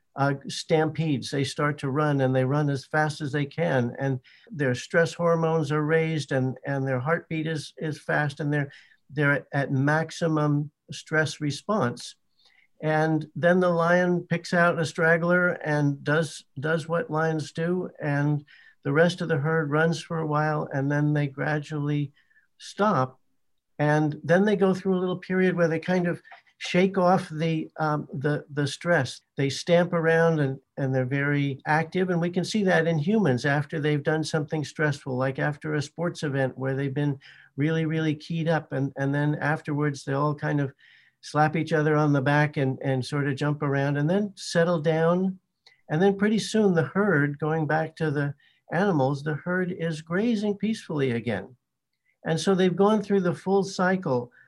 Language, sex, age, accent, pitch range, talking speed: English, male, 60-79, American, 145-170 Hz, 180 wpm